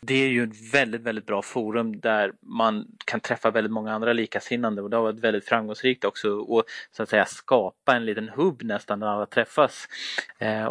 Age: 20-39